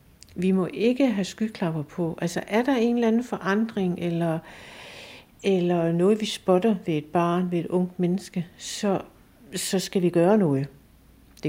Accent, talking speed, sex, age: native, 165 wpm, female, 60-79